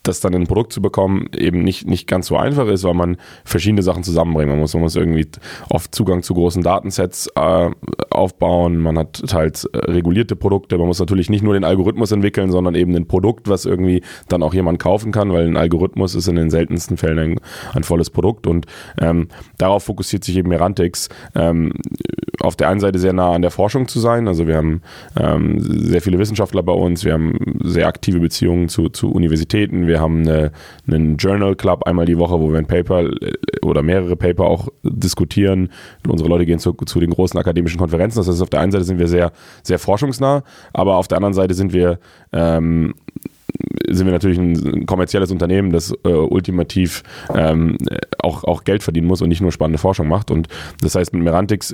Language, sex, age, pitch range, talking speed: German, male, 20-39, 85-95 Hz, 205 wpm